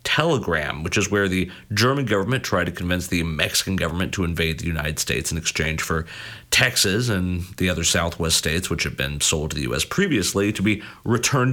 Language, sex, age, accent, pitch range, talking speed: English, male, 40-59, American, 90-115 Hz, 200 wpm